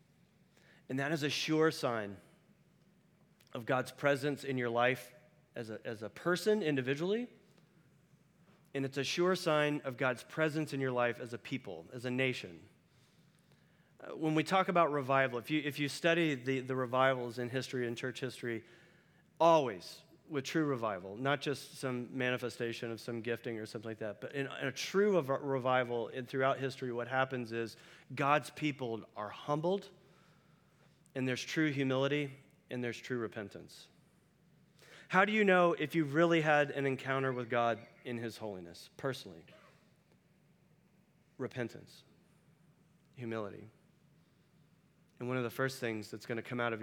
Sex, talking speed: male, 150 wpm